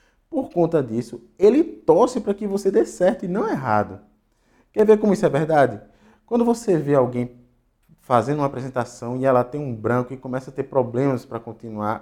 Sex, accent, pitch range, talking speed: male, Brazilian, 115-165 Hz, 190 wpm